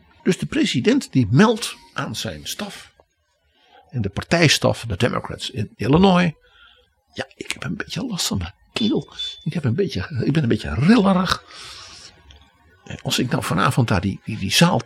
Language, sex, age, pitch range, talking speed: Dutch, male, 60-79, 110-160 Hz, 155 wpm